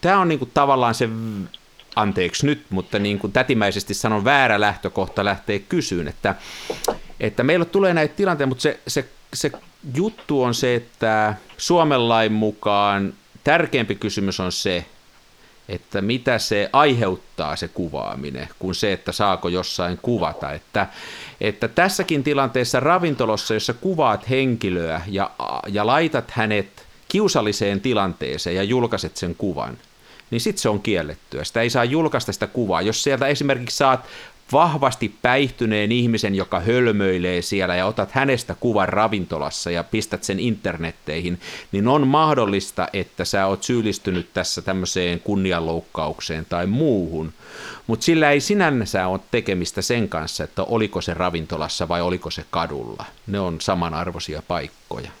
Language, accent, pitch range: Finnish, native, 90-130 Hz